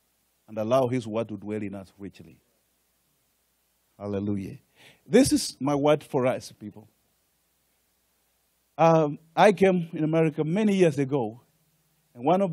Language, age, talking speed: English, 50-69, 135 wpm